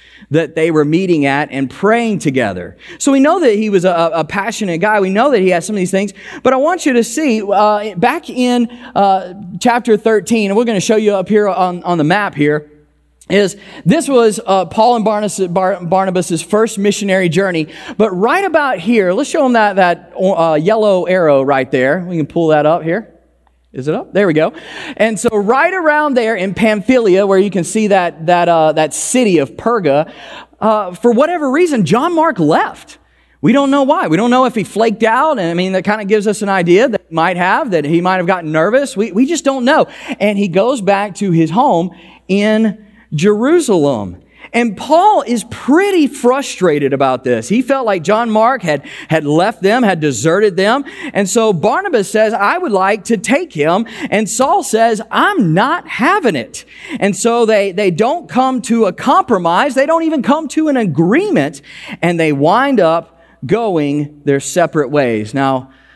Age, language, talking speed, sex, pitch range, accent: 30-49, English, 200 wpm, male, 175-240 Hz, American